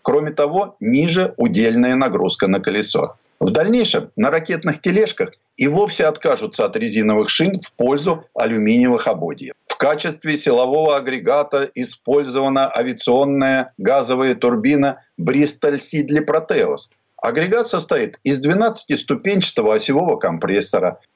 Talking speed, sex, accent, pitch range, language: 110 wpm, male, native, 140-205 Hz, Russian